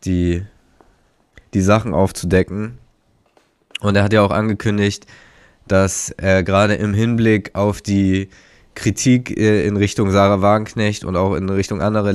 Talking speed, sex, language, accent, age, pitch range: 135 wpm, male, German, German, 20-39, 95-110 Hz